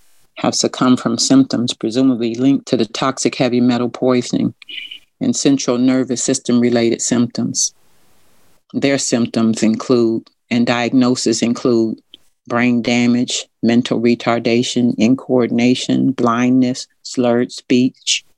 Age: 50-69